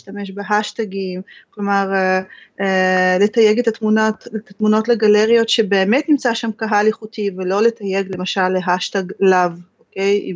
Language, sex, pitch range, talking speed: Hebrew, female, 195-235 Hz, 120 wpm